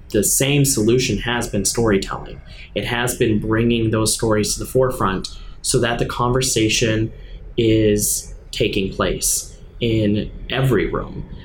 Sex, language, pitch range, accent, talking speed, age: male, English, 105-125 Hz, American, 130 wpm, 10-29